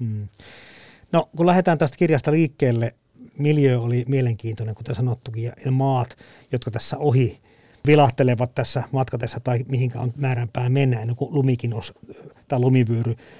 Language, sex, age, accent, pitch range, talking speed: Finnish, male, 50-69, native, 125-150 Hz, 120 wpm